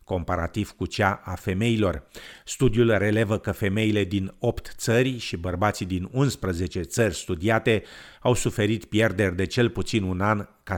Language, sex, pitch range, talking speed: Romanian, male, 90-110 Hz, 150 wpm